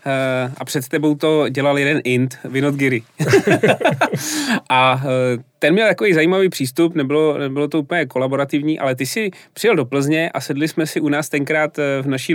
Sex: male